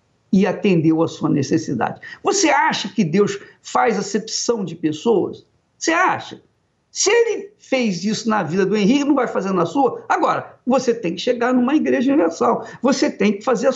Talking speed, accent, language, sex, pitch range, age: 180 wpm, Brazilian, Portuguese, male, 190-270 Hz, 60-79